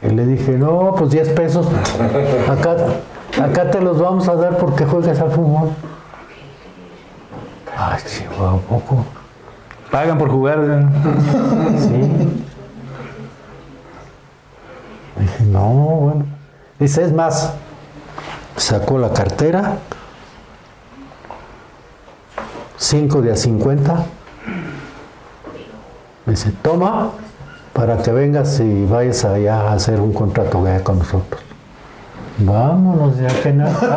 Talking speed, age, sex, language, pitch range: 110 wpm, 60-79, male, Spanish, 115-160 Hz